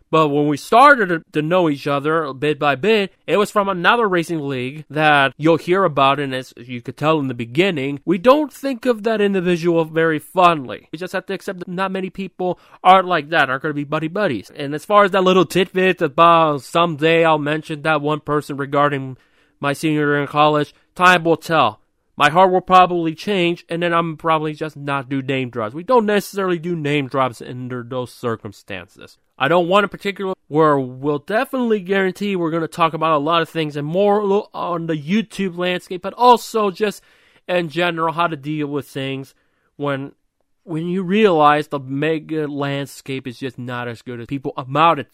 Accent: American